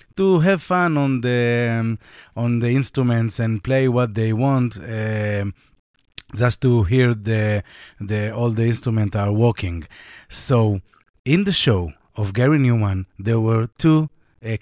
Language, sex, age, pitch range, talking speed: Hebrew, male, 30-49, 105-135 Hz, 150 wpm